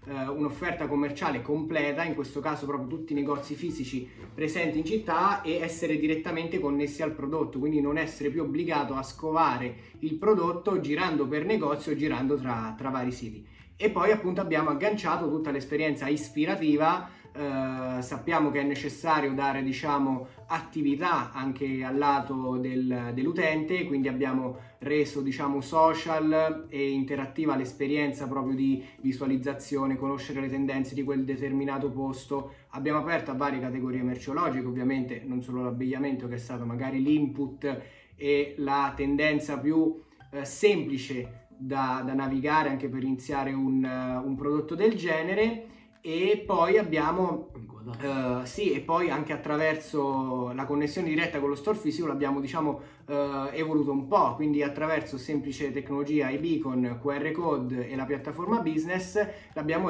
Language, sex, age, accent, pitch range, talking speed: Italian, male, 20-39, native, 135-155 Hz, 145 wpm